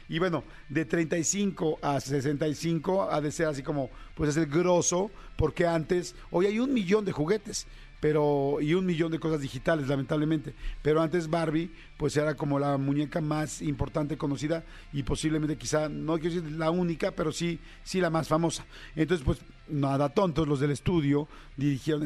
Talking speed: 175 wpm